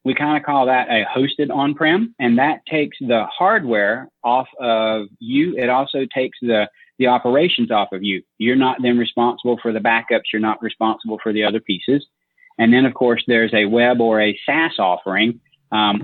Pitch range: 110-130 Hz